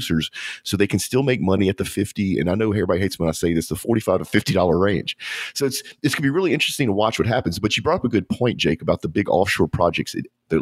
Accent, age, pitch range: American, 40-59, 80-105 Hz